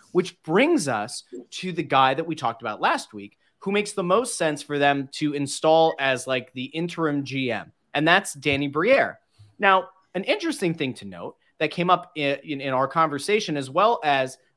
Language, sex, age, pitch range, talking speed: English, male, 30-49, 130-175 Hz, 195 wpm